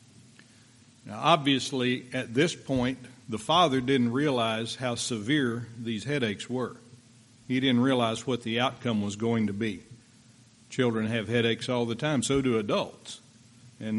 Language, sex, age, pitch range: English, male, 50-69, 115-130 Hz